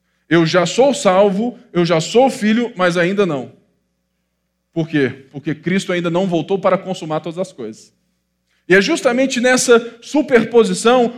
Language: Portuguese